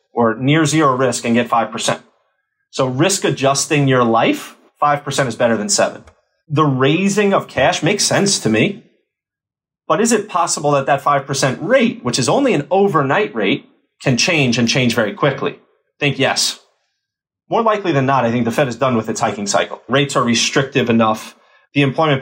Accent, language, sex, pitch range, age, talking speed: American, English, male, 125-160 Hz, 30-49, 185 wpm